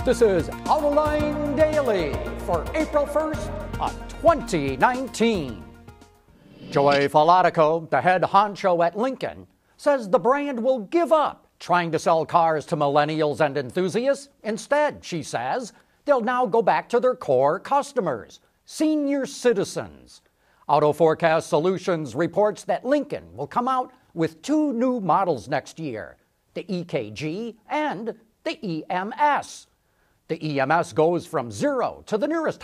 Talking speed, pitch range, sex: 130 wpm, 165-275 Hz, male